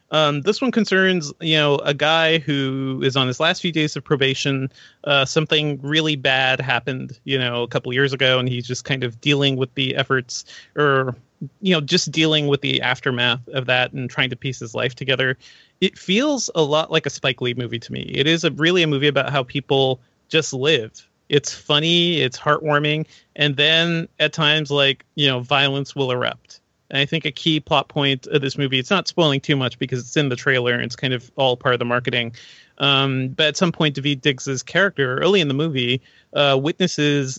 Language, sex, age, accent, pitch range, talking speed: English, male, 30-49, American, 130-155 Hz, 215 wpm